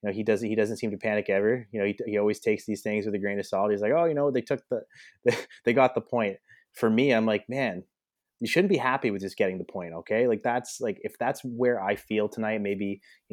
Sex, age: male, 30-49